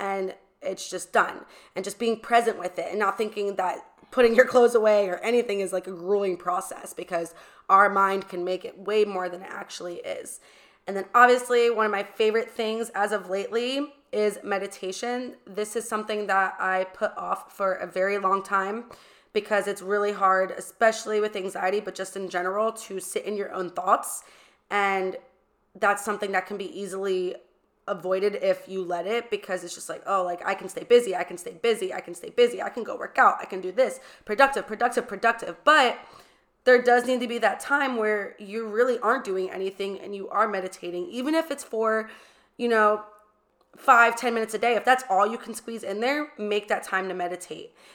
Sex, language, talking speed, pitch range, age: female, English, 205 wpm, 190-235 Hz, 20-39